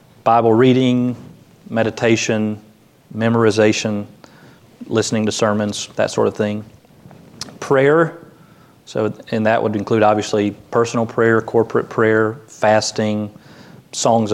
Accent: American